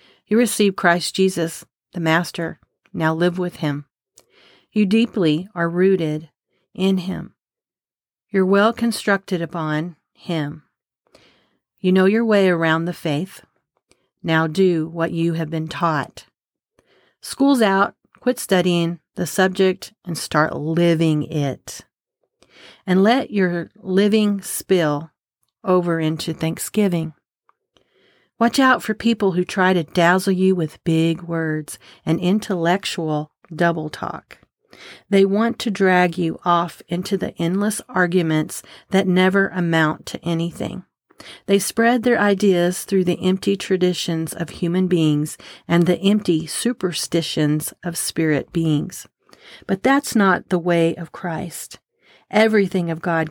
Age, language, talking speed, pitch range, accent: 50-69, English, 125 wpm, 165-195 Hz, American